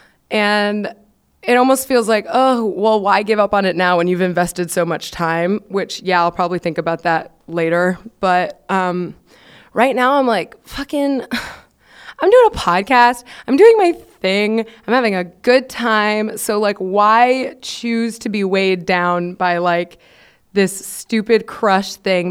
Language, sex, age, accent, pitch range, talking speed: English, female, 20-39, American, 185-240 Hz, 165 wpm